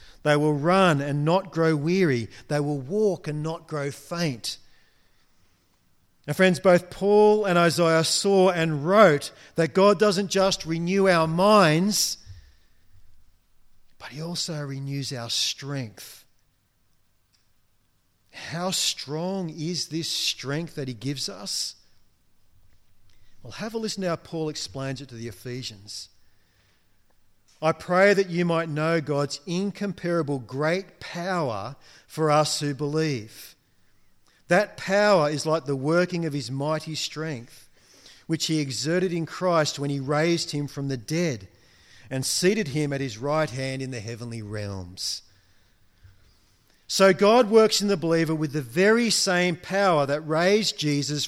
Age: 40-59